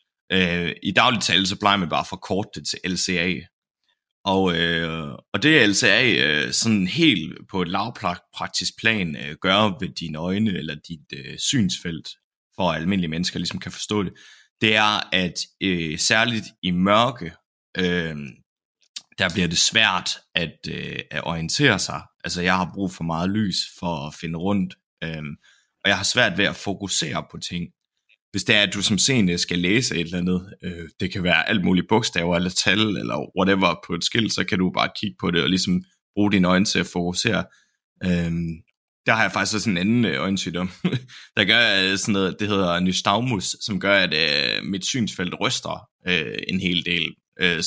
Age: 30-49